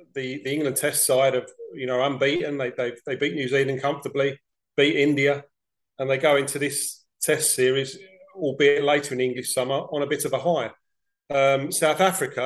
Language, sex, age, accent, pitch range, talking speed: English, male, 40-59, British, 145-185 Hz, 190 wpm